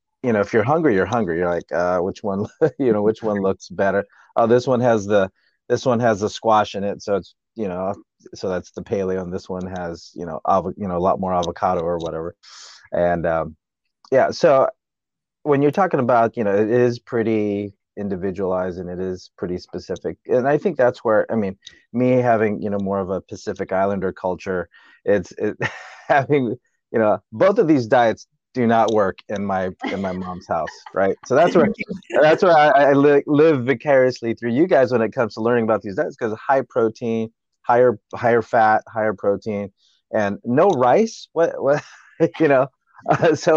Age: 30-49